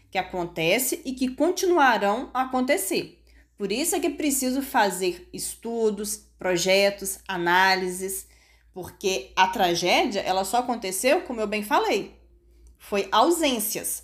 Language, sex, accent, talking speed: Portuguese, female, Brazilian, 120 wpm